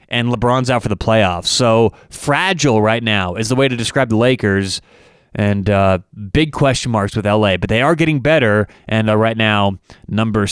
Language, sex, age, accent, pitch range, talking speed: English, male, 30-49, American, 115-145 Hz, 195 wpm